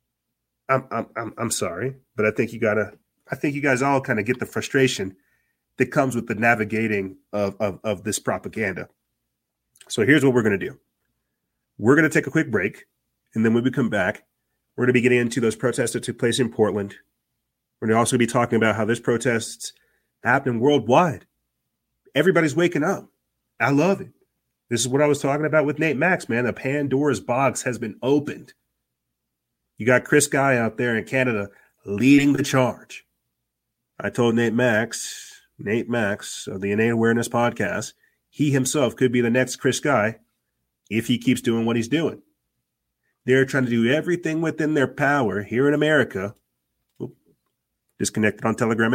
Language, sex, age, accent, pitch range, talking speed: English, male, 30-49, American, 110-135 Hz, 185 wpm